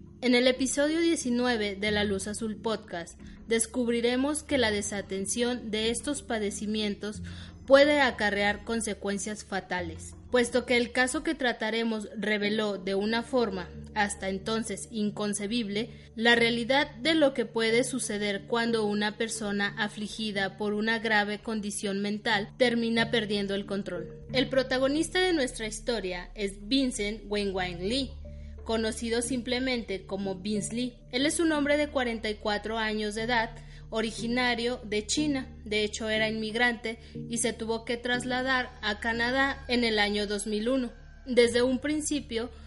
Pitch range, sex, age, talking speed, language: 205-245 Hz, female, 20-39, 135 wpm, Spanish